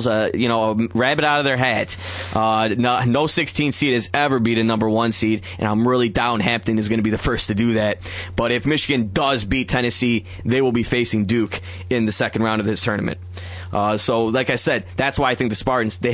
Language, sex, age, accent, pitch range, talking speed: English, male, 20-39, American, 110-135 Hz, 240 wpm